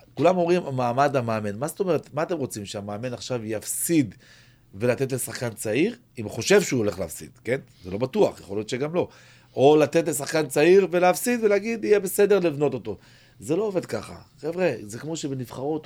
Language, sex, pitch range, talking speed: Hebrew, male, 105-145 Hz, 175 wpm